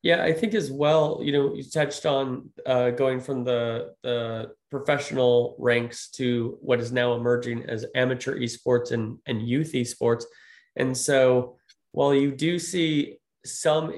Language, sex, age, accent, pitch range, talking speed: English, male, 30-49, American, 120-140 Hz, 155 wpm